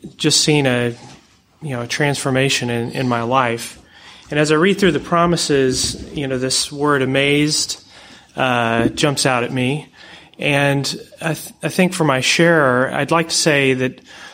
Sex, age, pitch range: male, 30-49, 125-155 Hz